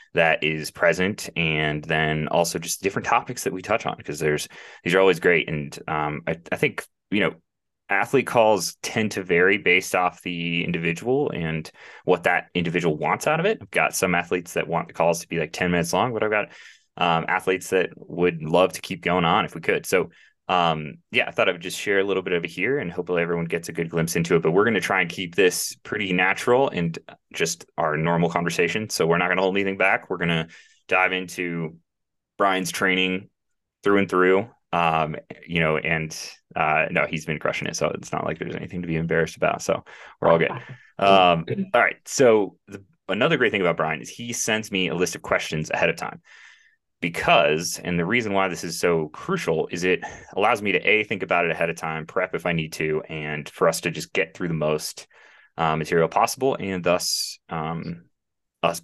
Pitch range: 80-95 Hz